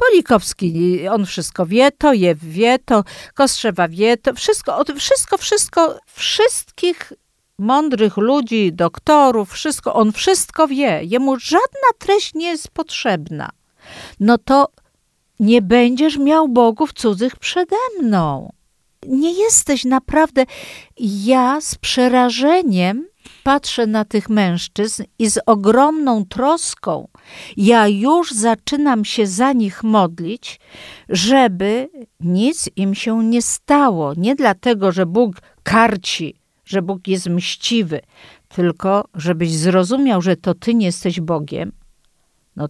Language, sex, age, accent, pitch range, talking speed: Polish, female, 50-69, native, 190-260 Hz, 115 wpm